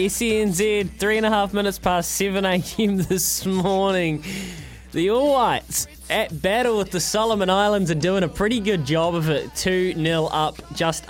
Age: 20-39